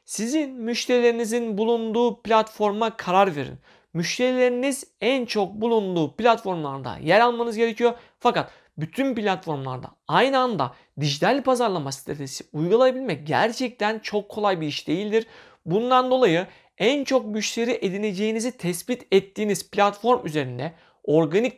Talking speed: 110 wpm